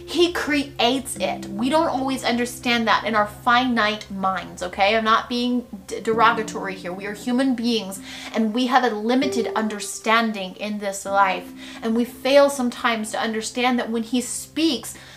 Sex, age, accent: female, 30-49, American